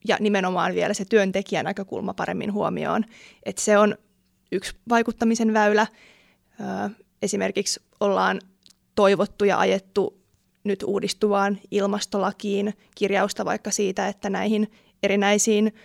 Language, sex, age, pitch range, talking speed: Finnish, female, 20-39, 195-215 Hz, 105 wpm